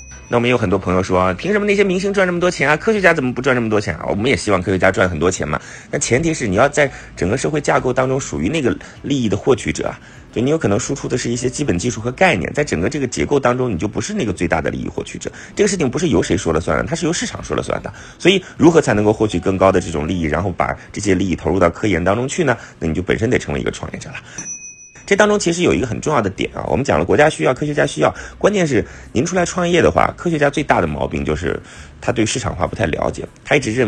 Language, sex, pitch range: Chinese, male, 80-130 Hz